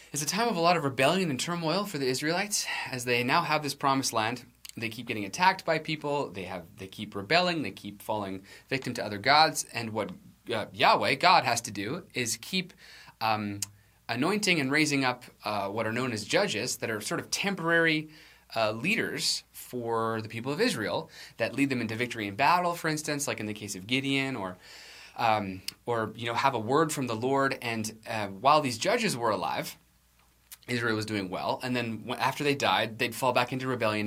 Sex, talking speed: male, 210 wpm